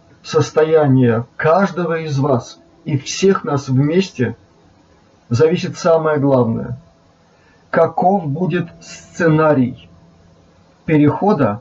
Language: Russian